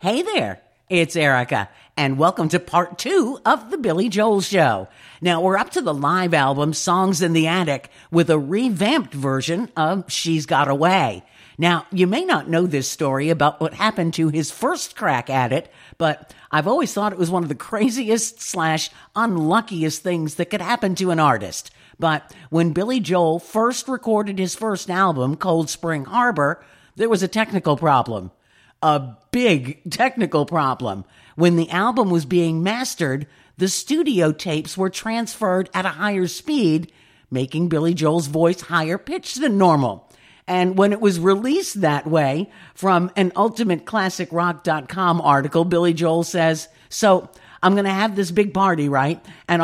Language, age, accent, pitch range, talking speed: English, 50-69, American, 155-200 Hz, 165 wpm